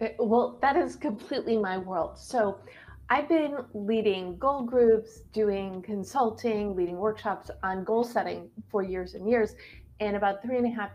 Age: 30-49